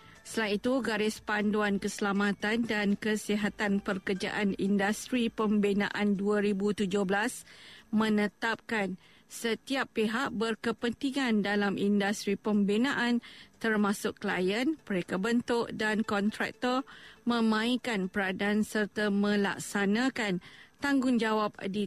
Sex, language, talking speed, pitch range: female, Malay, 80 wpm, 205-235 Hz